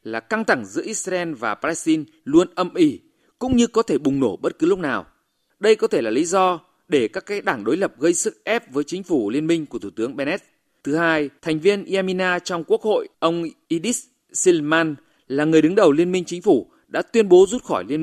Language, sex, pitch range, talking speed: Vietnamese, male, 150-235 Hz, 230 wpm